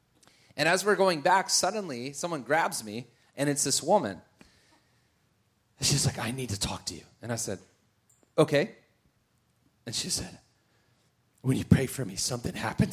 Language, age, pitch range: English, 30-49, 110-160 Hz